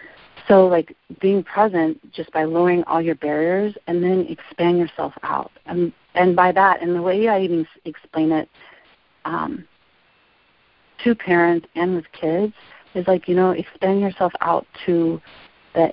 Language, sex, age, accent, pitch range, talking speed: English, female, 40-59, American, 160-185 Hz, 160 wpm